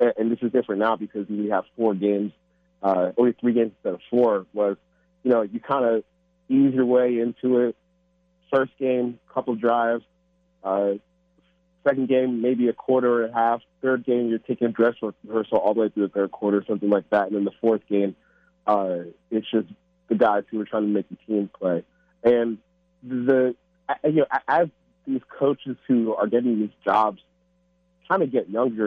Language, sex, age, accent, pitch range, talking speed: English, male, 30-49, American, 100-130 Hz, 190 wpm